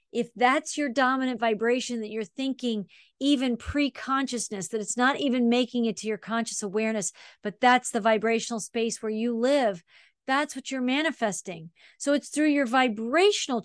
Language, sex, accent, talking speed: English, female, American, 165 wpm